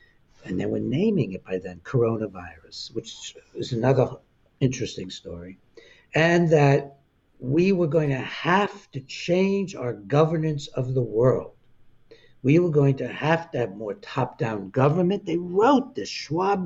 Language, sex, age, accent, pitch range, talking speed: English, male, 60-79, American, 120-160 Hz, 150 wpm